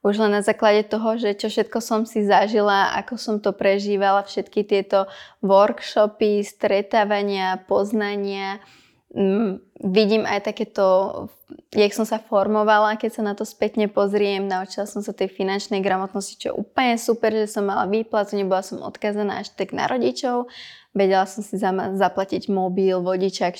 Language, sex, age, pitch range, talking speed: Slovak, female, 20-39, 195-215 Hz, 160 wpm